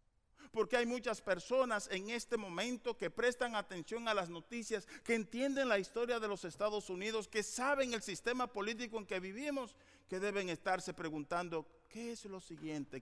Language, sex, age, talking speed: Spanish, male, 50-69, 170 wpm